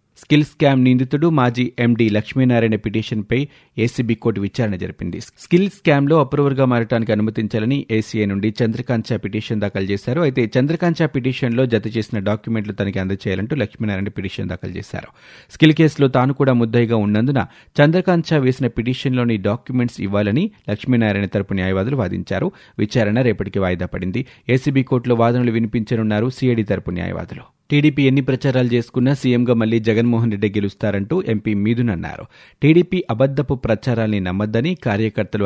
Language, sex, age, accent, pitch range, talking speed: Telugu, male, 30-49, native, 105-135 Hz, 115 wpm